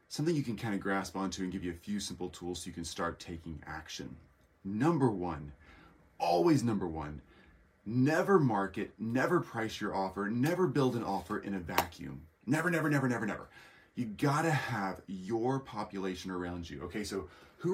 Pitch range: 85-125 Hz